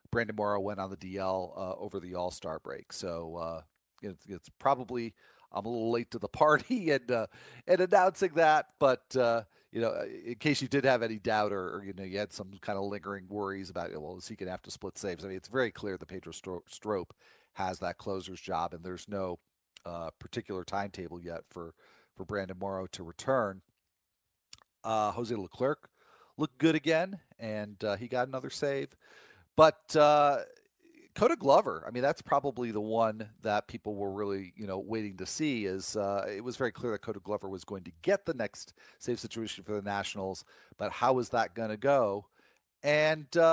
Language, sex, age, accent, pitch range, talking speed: English, male, 40-59, American, 95-130 Hz, 205 wpm